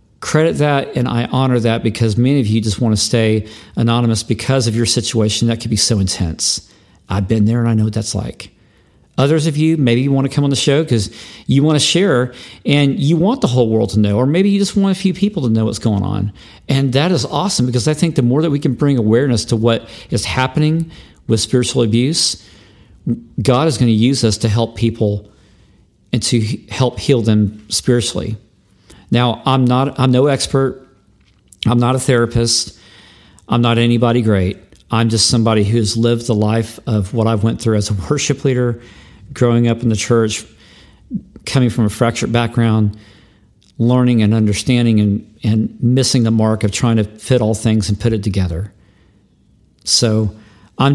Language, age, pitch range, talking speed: English, 50-69, 105-125 Hz, 195 wpm